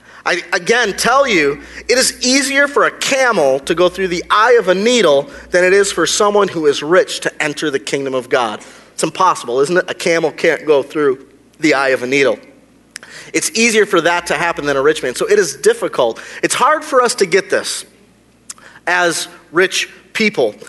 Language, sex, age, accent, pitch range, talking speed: English, male, 30-49, American, 160-220 Hz, 205 wpm